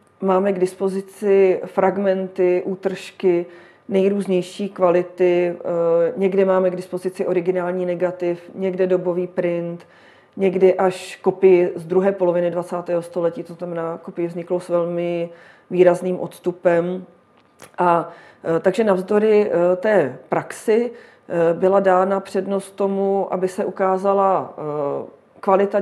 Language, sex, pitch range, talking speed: Czech, female, 175-195 Hz, 105 wpm